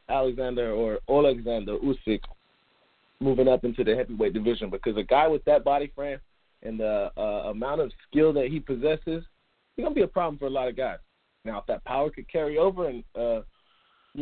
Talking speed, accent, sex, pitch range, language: 195 wpm, American, male, 110-150 Hz, English